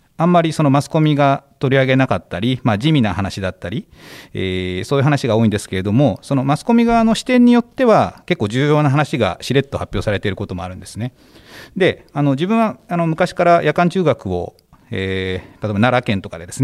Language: Japanese